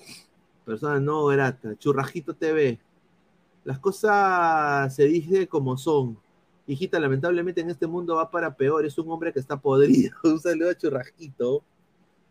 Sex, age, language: male, 30-49, Spanish